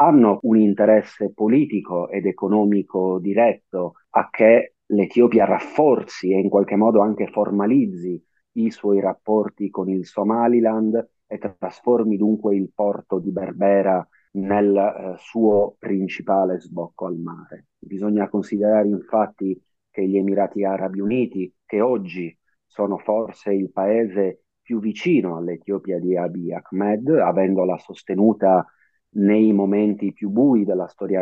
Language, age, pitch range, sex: Italian, 30-49, 95-105 Hz, male